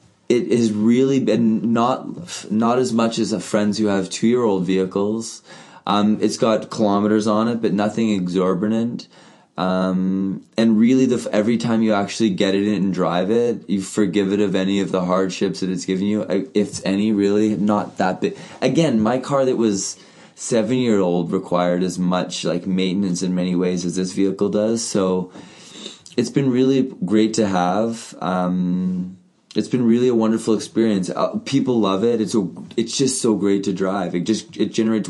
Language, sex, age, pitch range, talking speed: English, male, 20-39, 95-110 Hz, 175 wpm